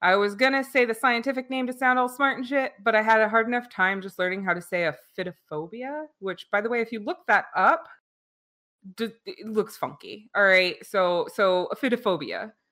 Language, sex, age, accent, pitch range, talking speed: English, female, 20-39, American, 185-245 Hz, 215 wpm